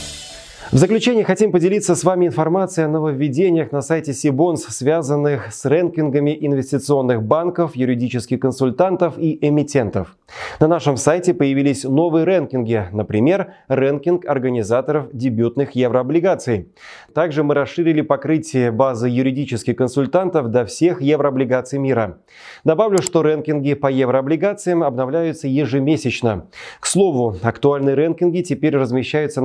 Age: 30-49